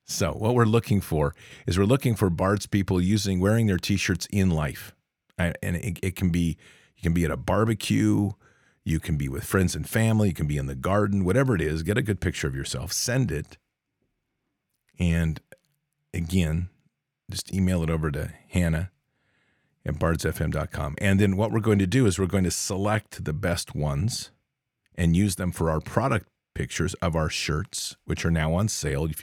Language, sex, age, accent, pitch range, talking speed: English, male, 40-59, American, 80-105 Hz, 195 wpm